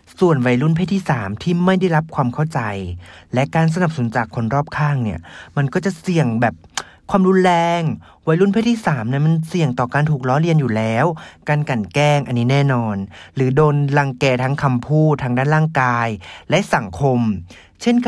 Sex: male